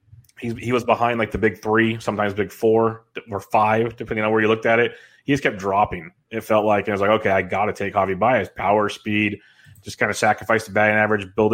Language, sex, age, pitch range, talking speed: English, male, 20-39, 105-120 Hz, 240 wpm